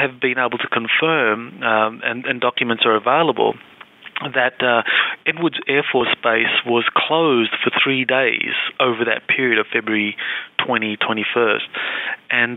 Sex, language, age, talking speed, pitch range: male, English, 30-49, 150 wpm, 115-135 Hz